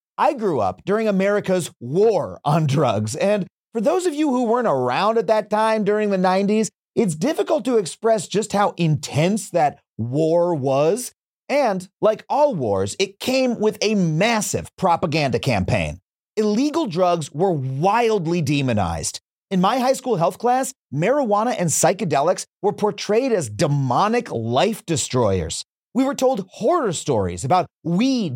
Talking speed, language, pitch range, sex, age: 150 wpm, English, 155-220 Hz, male, 30-49